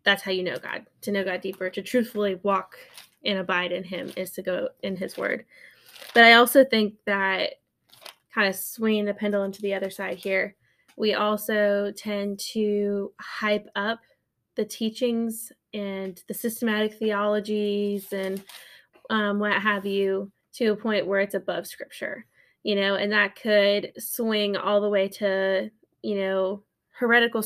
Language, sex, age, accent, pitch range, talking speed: English, female, 10-29, American, 195-220 Hz, 160 wpm